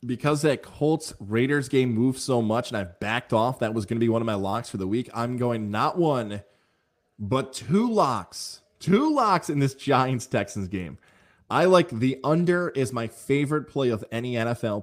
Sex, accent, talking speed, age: male, American, 195 wpm, 20-39